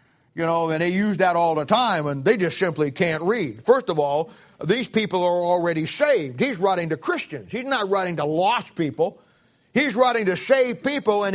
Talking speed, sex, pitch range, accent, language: 205 wpm, male, 175-245 Hz, American, English